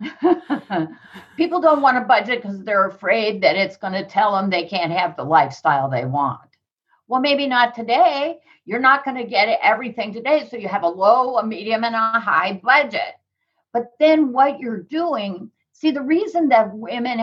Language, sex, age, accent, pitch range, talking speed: English, female, 60-79, American, 195-270 Hz, 185 wpm